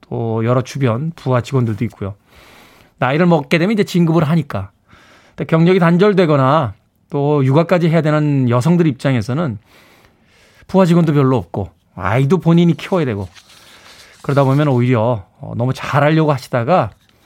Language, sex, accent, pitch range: Korean, male, native, 120-170 Hz